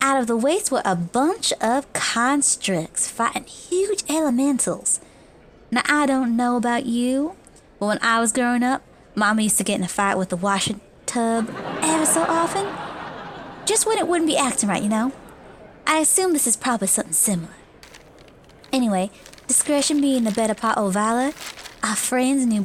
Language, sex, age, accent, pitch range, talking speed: English, female, 20-39, American, 205-270 Hz, 170 wpm